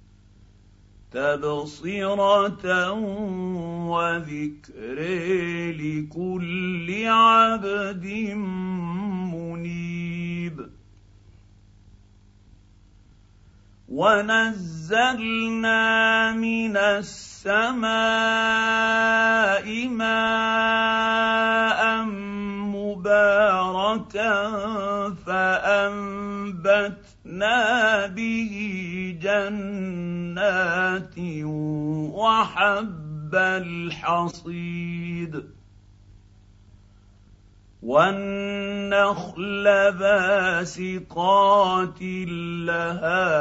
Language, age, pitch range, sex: Arabic, 50-69, 155-205 Hz, male